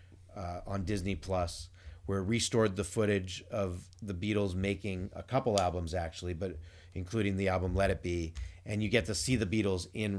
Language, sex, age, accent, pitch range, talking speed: English, male, 30-49, American, 90-115 Hz, 190 wpm